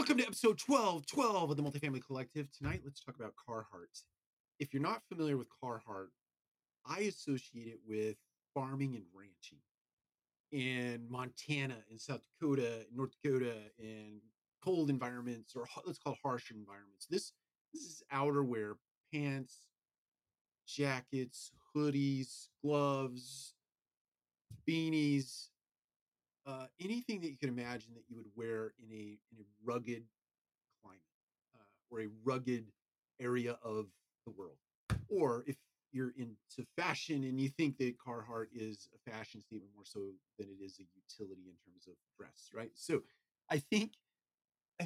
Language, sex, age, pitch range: English, male, 30-49, 110-140 Hz